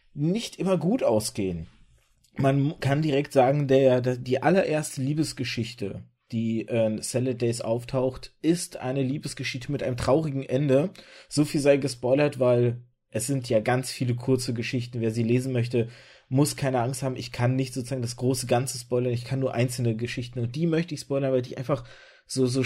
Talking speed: 175 wpm